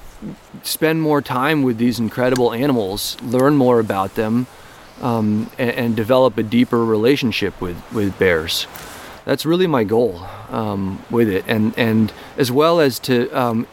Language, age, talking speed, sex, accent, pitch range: English, 30-49, 155 wpm, male, American, 110-135 Hz